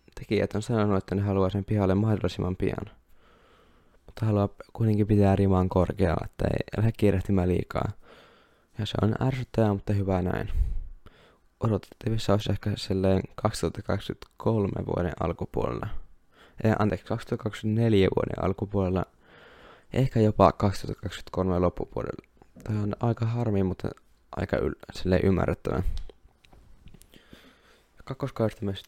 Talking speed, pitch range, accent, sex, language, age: 110 wpm, 95-110 Hz, native, male, Finnish, 20-39